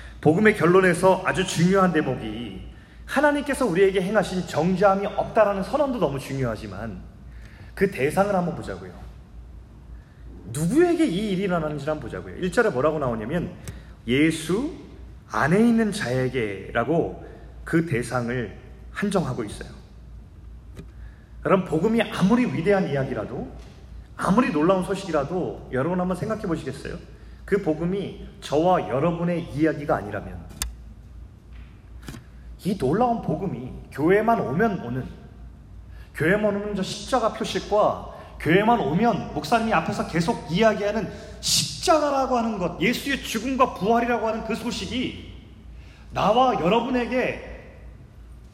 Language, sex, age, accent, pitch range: Korean, male, 30-49, native, 140-225 Hz